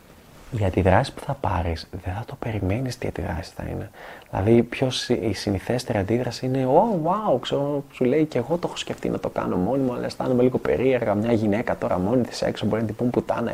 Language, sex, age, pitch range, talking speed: Greek, male, 20-39, 100-125 Hz, 225 wpm